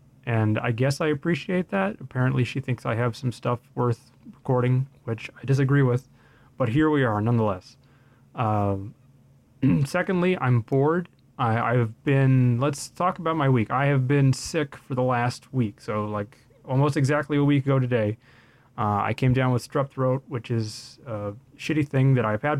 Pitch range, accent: 115-135 Hz, American